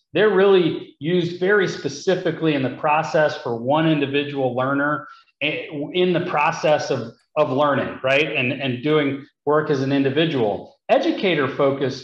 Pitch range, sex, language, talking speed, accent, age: 140-175 Hz, male, English, 135 wpm, American, 40-59